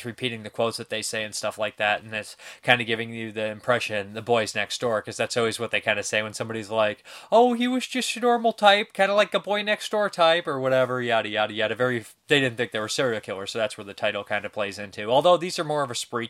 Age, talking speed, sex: 20-39, 285 wpm, male